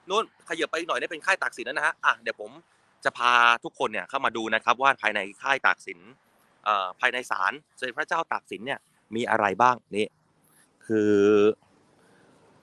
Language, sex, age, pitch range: Thai, male, 30-49, 90-120 Hz